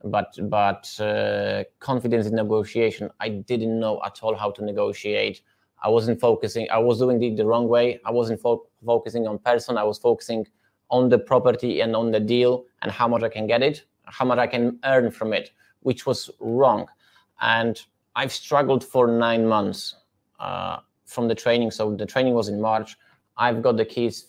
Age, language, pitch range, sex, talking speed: 20-39, English, 110-125 Hz, male, 190 wpm